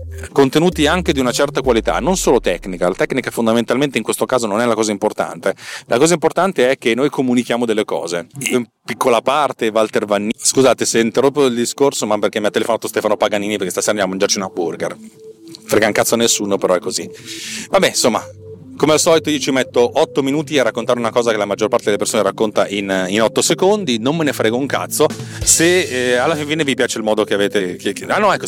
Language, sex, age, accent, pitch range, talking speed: Italian, male, 40-59, native, 110-140 Hz, 220 wpm